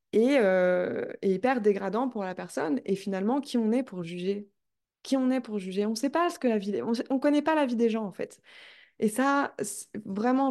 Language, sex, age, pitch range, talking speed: French, female, 20-39, 205-255 Hz, 235 wpm